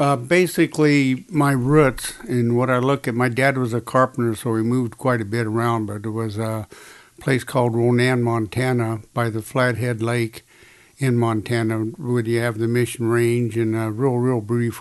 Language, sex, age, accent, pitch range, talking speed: English, male, 60-79, American, 110-125 Hz, 185 wpm